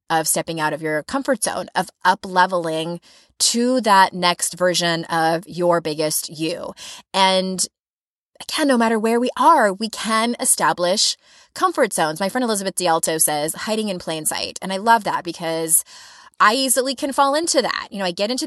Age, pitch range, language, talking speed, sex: 20-39, 170-245 Hz, English, 175 wpm, female